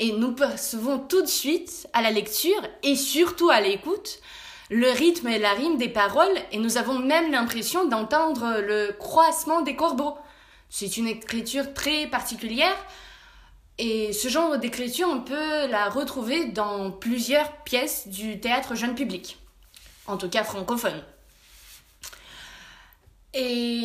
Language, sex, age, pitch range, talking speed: French, female, 20-39, 210-310 Hz, 140 wpm